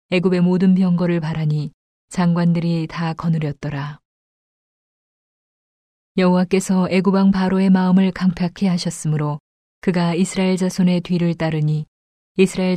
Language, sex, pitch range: Korean, female, 165-185 Hz